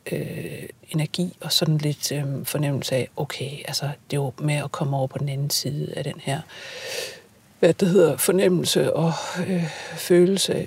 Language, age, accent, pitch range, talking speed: Danish, 60-79, native, 155-180 Hz, 175 wpm